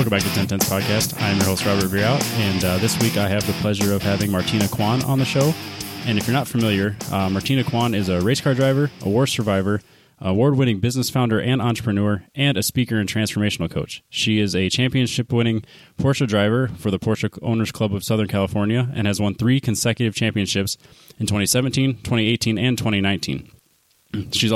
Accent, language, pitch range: American, English, 100-120 Hz